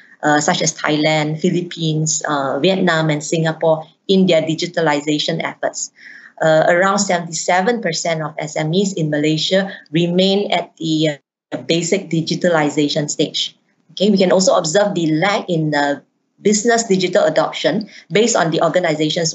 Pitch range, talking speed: 160-200 Hz, 140 wpm